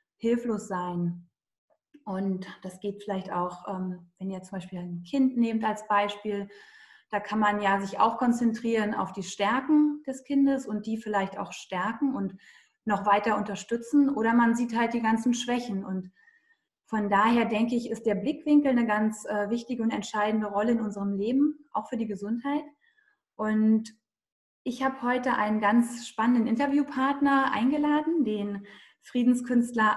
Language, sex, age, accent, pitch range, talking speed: German, female, 20-39, German, 210-255 Hz, 150 wpm